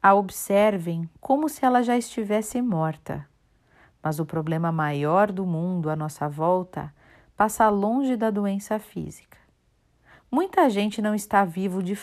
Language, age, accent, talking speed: Portuguese, 40-59, Brazilian, 140 wpm